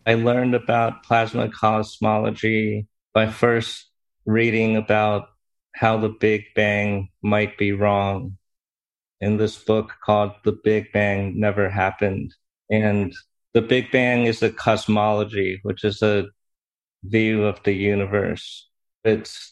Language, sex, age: English, male, 30-49